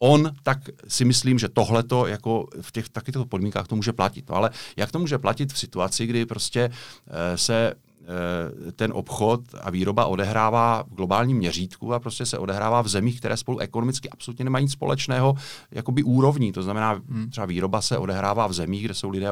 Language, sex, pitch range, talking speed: Czech, male, 100-120 Hz, 185 wpm